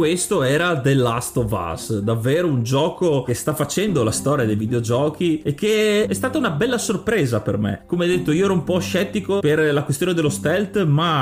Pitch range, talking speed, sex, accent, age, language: 125-170 Hz, 205 wpm, male, native, 30-49, Italian